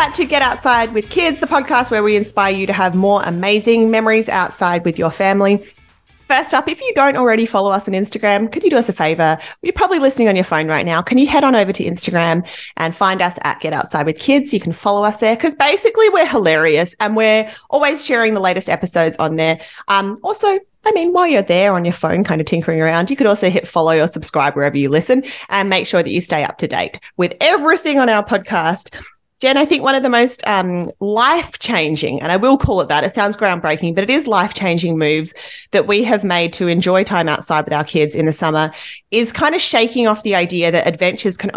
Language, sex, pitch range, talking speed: English, female, 170-235 Hz, 235 wpm